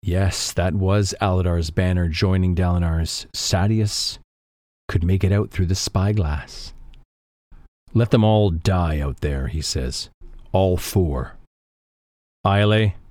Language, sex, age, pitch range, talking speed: English, male, 40-59, 80-105 Hz, 120 wpm